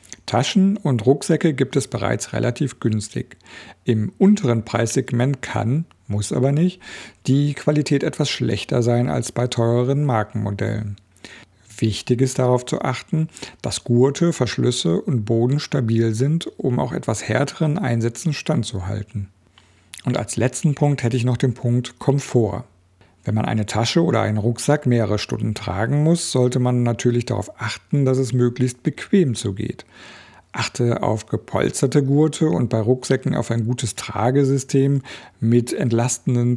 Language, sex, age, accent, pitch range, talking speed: German, male, 50-69, German, 110-130 Hz, 140 wpm